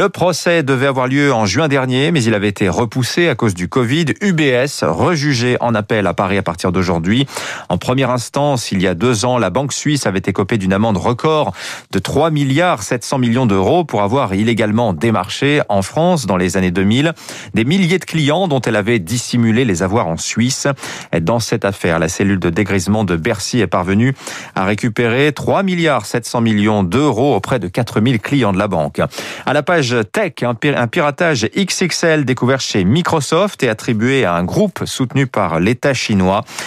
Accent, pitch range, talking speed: French, 105-145 Hz, 180 wpm